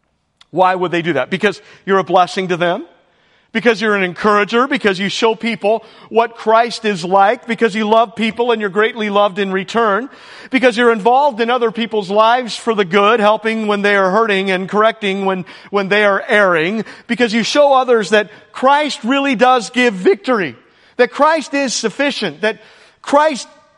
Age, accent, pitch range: 50-69, American, 185-240 Hz